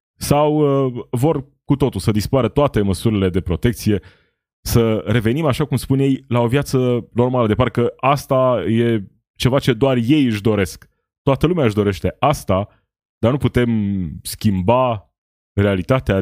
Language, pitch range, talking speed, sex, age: Romanian, 95-135 Hz, 150 wpm, male, 20-39